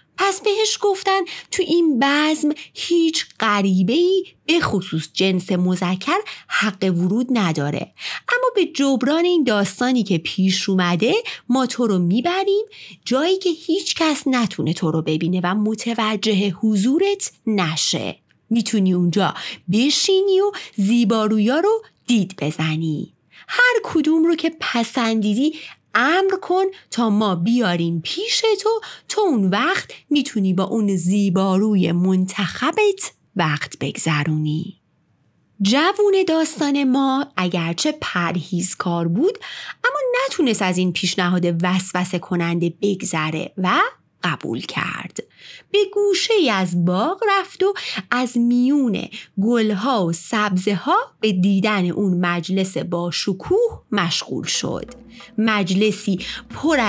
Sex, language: female, Persian